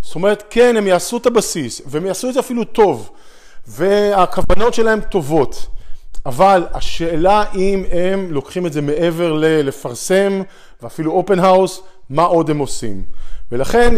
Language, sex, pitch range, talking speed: Hebrew, male, 145-200 Hz, 140 wpm